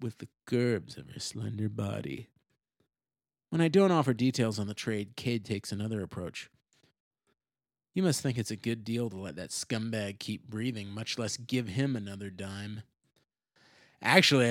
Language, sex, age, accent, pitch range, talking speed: English, male, 30-49, American, 105-130 Hz, 160 wpm